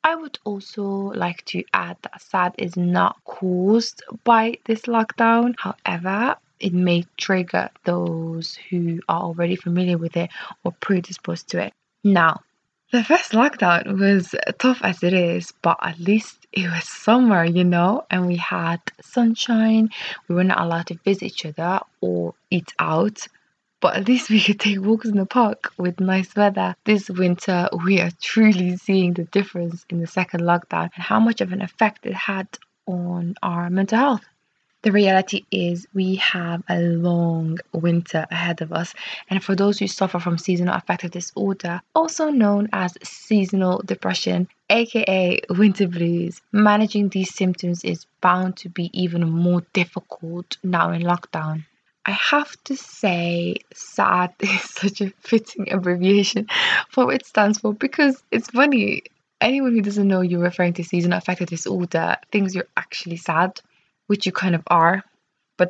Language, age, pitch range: English, 20-39, 175-210 Hz